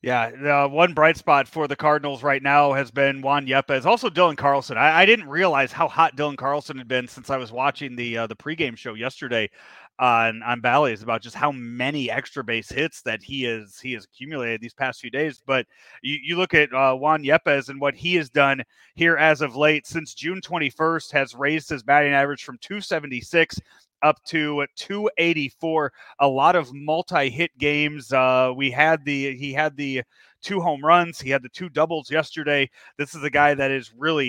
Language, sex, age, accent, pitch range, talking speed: English, male, 30-49, American, 135-170 Hz, 210 wpm